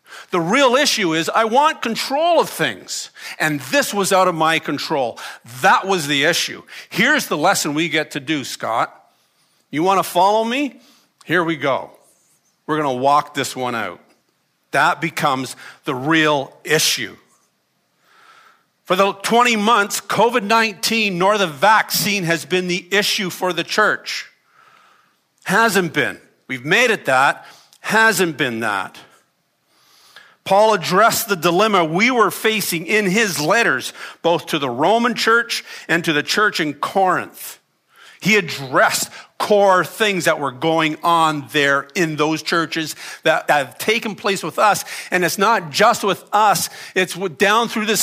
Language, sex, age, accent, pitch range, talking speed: English, male, 50-69, American, 155-210 Hz, 150 wpm